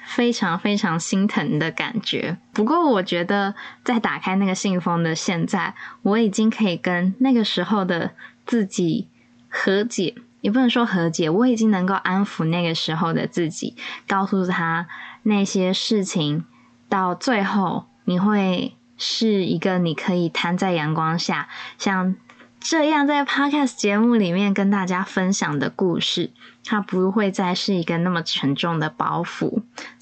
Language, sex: Chinese, female